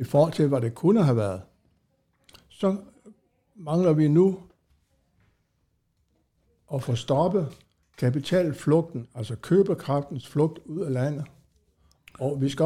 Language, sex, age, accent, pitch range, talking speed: Danish, male, 60-79, native, 120-160 Hz, 120 wpm